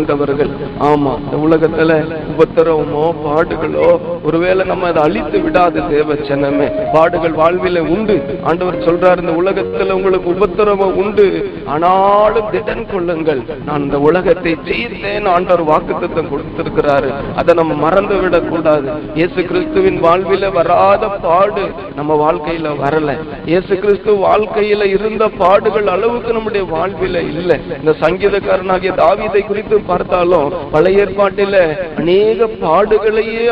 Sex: male